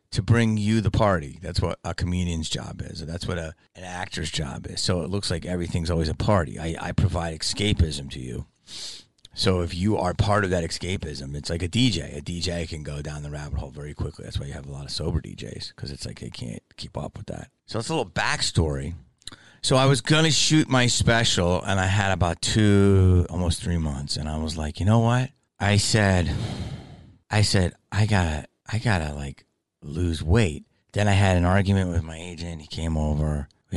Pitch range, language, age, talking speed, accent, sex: 80-105 Hz, English, 30-49, 215 wpm, American, male